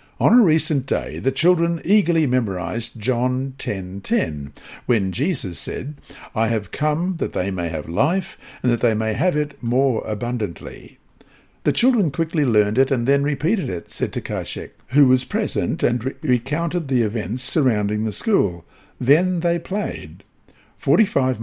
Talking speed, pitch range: 155 wpm, 110-155 Hz